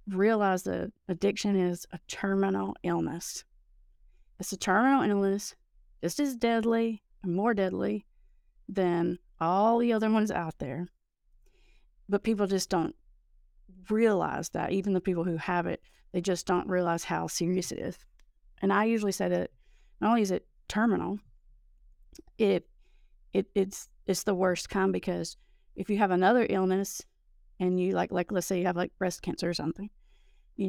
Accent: American